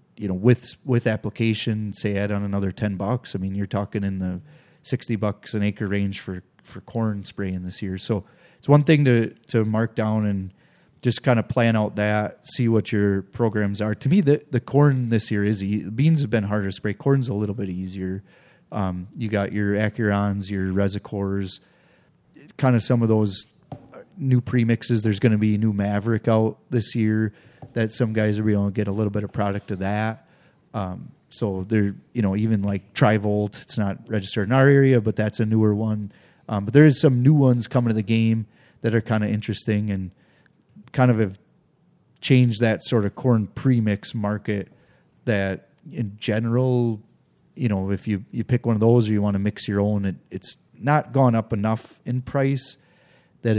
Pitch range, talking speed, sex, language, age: 100-120 Hz, 200 wpm, male, English, 30-49